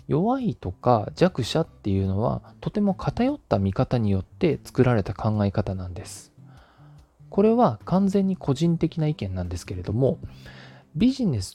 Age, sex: 20-39, male